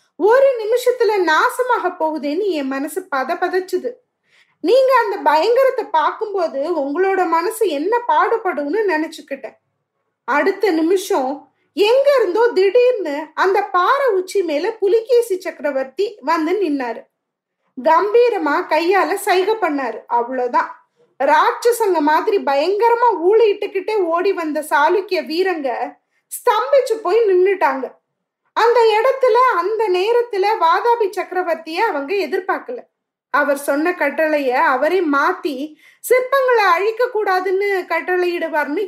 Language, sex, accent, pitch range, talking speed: Tamil, female, native, 315-445 Hz, 95 wpm